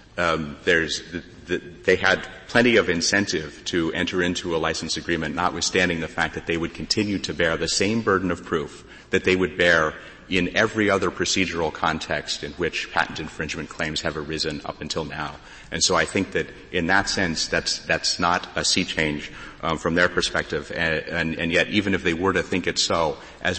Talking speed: 200 wpm